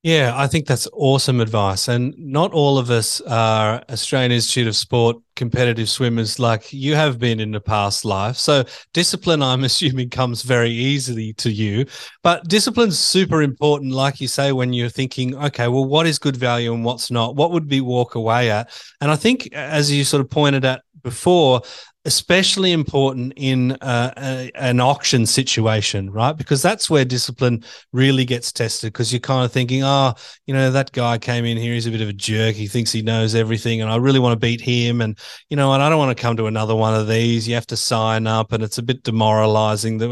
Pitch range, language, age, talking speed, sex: 115-145 Hz, English, 30-49, 210 wpm, male